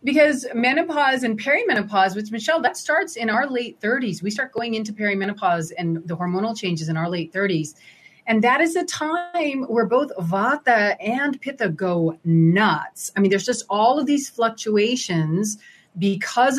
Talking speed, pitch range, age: 165 wpm, 175-235 Hz, 30-49